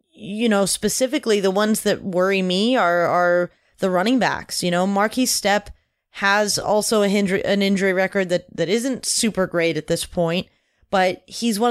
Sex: female